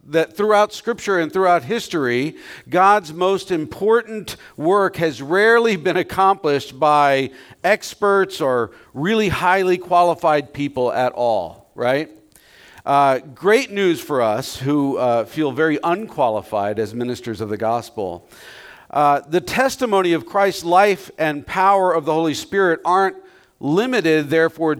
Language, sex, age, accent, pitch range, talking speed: English, male, 50-69, American, 145-185 Hz, 130 wpm